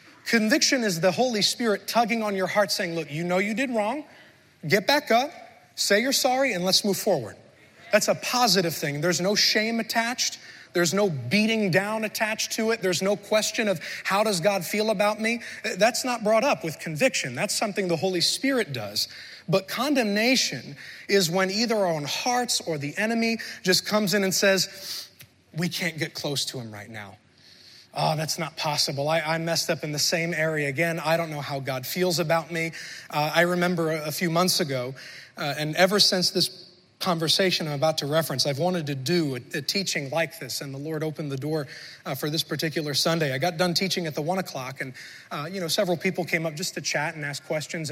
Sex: male